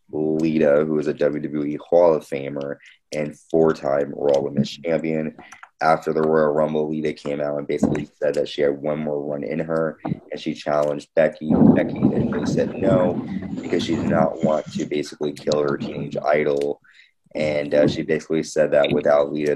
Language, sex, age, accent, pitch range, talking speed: English, male, 20-39, American, 70-80 Hz, 180 wpm